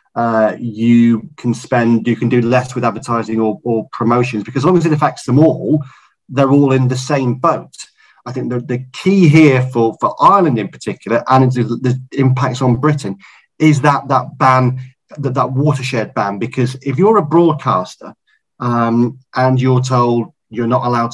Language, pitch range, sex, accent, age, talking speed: English, 120-140 Hz, male, British, 30-49, 180 wpm